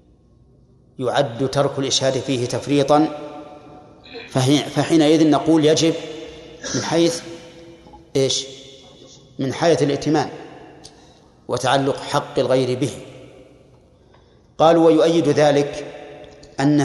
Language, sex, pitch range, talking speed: Arabic, male, 135-160 Hz, 80 wpm